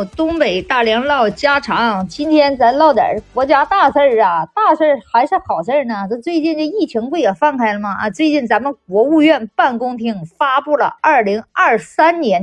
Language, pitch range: Chinese, 215-305 Hz